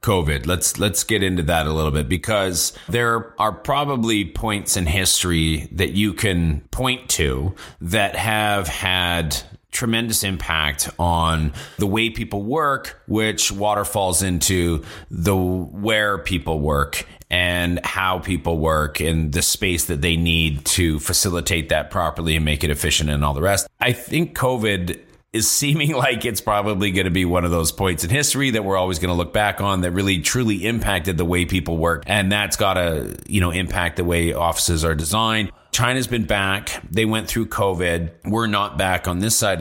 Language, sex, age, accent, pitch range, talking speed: English, male, 30-49, American, 85-105 Hz, 180 wpm